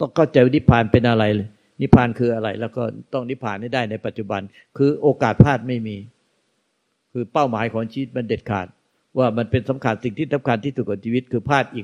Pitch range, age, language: 110-130 Hz, 60-79, Thai